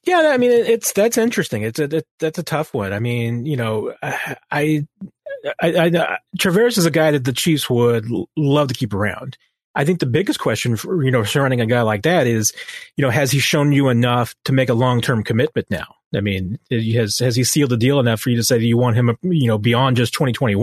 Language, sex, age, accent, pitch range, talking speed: English, male, 30-49, American, 115-160 Hz, 240 wpm